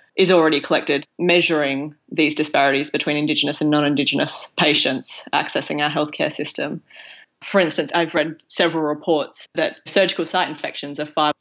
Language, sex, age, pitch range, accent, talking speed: English, female, 20-39, 145-165 Hz, Australian, 140 wpm